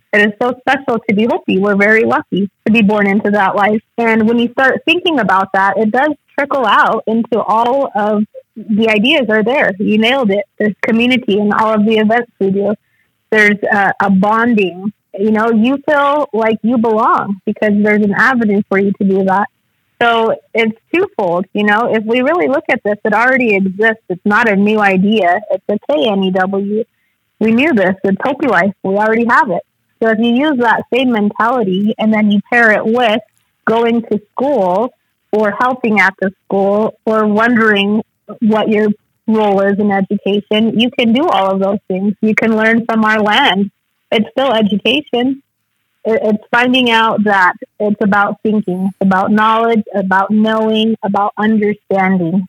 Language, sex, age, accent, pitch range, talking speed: English, female, 20-39, American, 205-235 Hz, 180 wpm